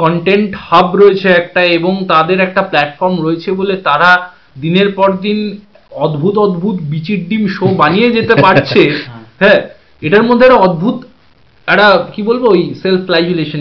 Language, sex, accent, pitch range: Bengali, male, native, 160-210 Hz